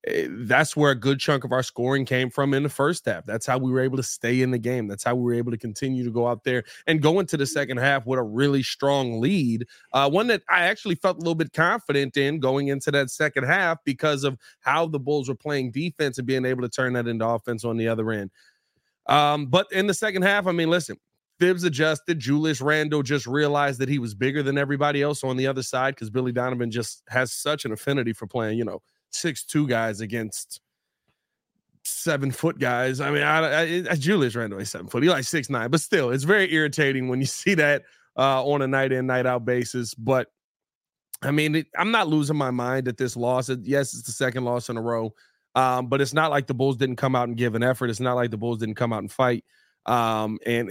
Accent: American